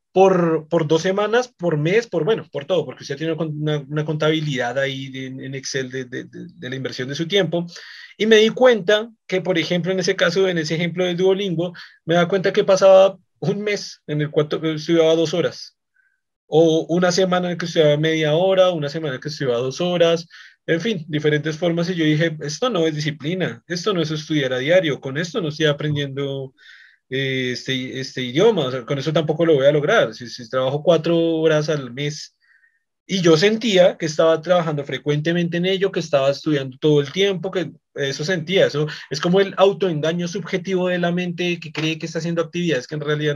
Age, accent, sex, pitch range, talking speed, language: 30-49, Colombian, male, 150-185 Hz, 205 wpm, Spanish